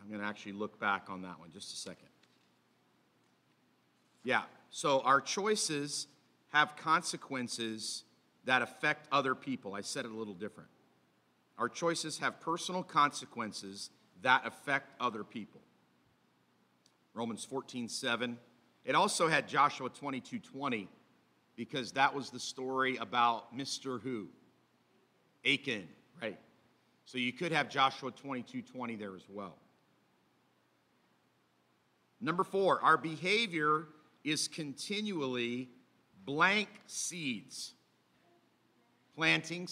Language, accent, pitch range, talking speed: English, American, 115-160 Hz, 115 wpm